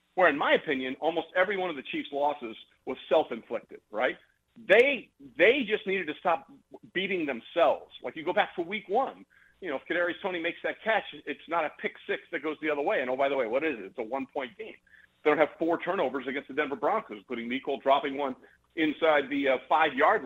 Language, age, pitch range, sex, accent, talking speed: English, 40-59, 140-215 Hz, male, American, 225 wpm